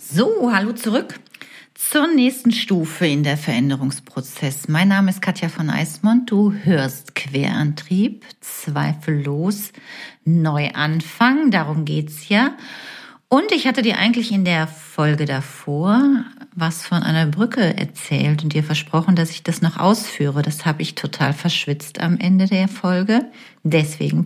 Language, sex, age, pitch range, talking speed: German, female, 40-59, 150-205 Hz, 140 wpm